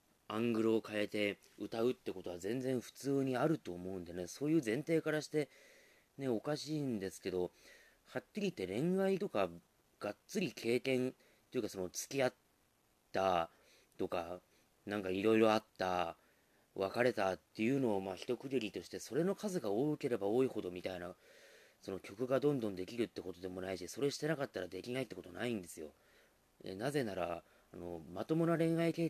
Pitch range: 95-155 Hz